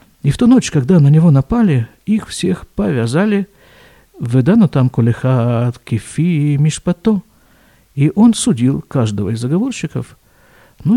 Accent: native